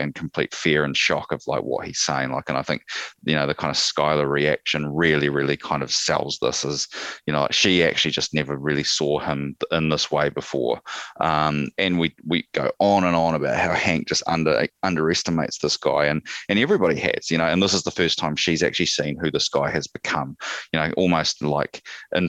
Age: 20-39